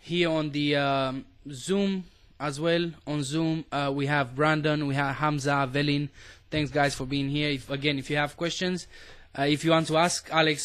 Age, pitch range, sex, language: 20-39, 130-160 Hz, male, English